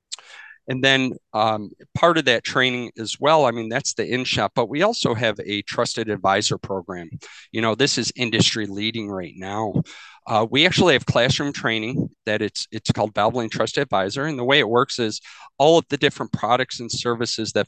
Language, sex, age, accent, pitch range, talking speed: English, male, 40-59, American, 110-135 Hz, 195 wpm